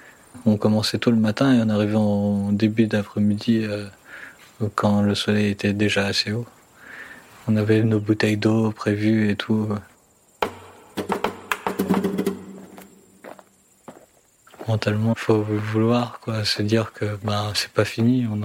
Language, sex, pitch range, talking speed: French, male, 105-120 Hz, 135 wpm